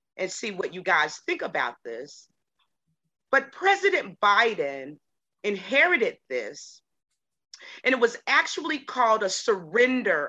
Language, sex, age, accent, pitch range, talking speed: English, female, 40-59, American, 195-285 Hz, 115 wpm